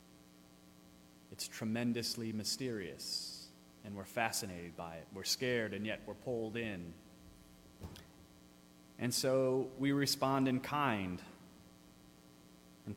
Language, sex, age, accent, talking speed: English, male, 30-49, American, 100 wpm